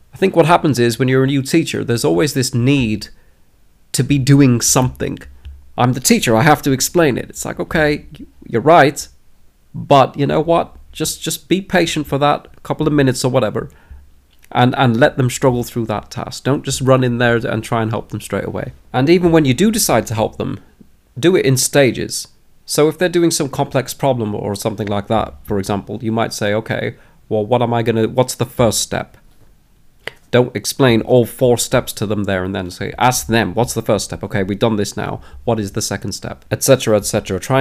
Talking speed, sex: 215 wpm, male